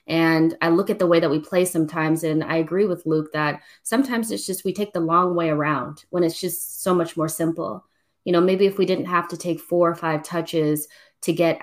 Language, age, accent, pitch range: English, 20-39, American, 160-185 Hz